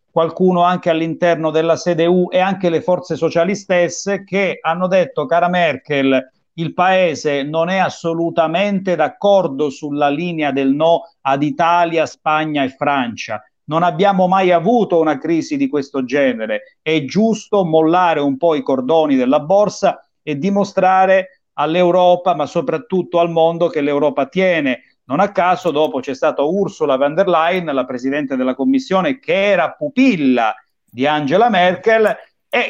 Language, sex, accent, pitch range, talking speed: Italian, male, native, 150-190 Hz, 145 wpm